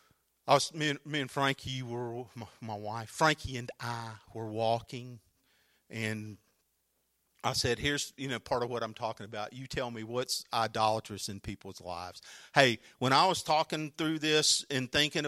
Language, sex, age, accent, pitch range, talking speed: English, male, 50-69, American, 120-180 Hz, 180 wpm